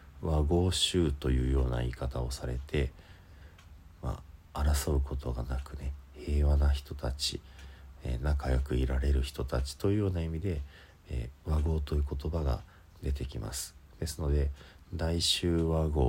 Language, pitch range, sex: Japanese, 70-80 Hz, male